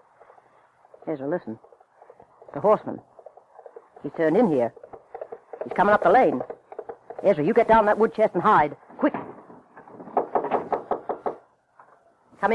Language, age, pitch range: English, 60-79, 160-240 Hz